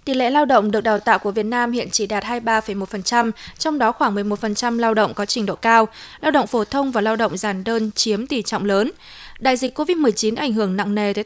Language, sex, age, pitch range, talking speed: Vietnamese, female, 20-39, 205-250 Hz, 240 wpm